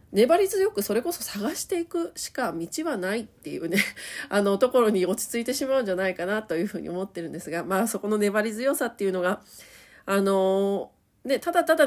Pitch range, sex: 190-275 Hz, female